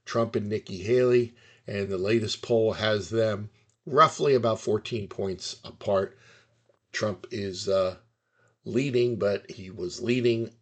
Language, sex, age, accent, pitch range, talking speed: English, male, 50-69, American, 95-115 Hz, 130 wpm